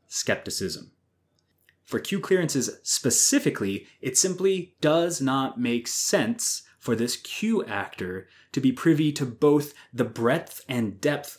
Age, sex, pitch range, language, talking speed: 20-39, male, 100-130 Hz, English, 125 wpm